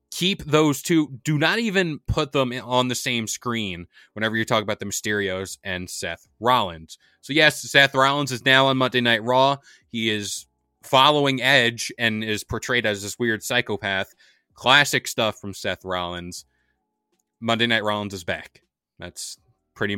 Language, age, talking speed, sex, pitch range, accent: English, 20-39, 160 wpm, male, 100-130 Hz, American